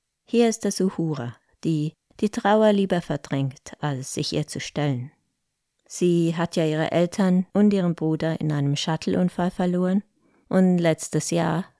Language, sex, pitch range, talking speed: German, female, 155-190 Hz, 145 wpm